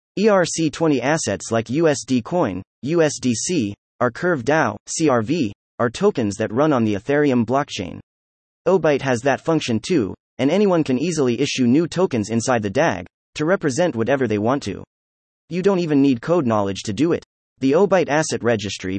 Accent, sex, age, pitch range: American, male, 30-49, 105-160 Hz